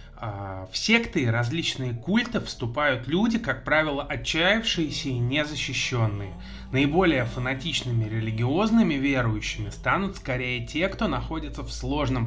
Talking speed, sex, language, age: 110 wpm, male, Russian, 20-39